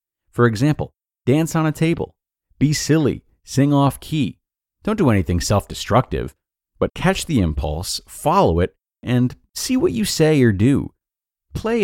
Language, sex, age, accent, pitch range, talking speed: English, male, 40-59, American, 90-130 Hz, 145 wpm